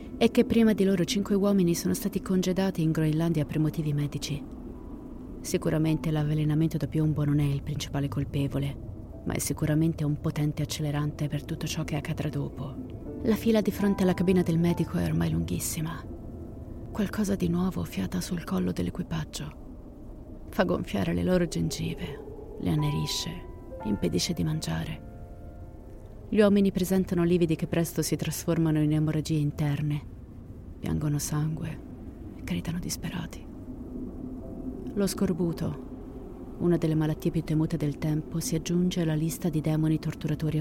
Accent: native